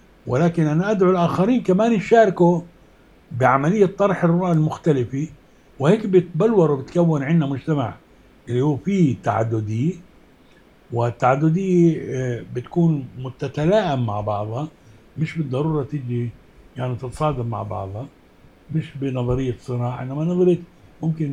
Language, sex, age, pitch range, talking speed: Arabic, male, 60-79, 120-155 Hz, 105 wpm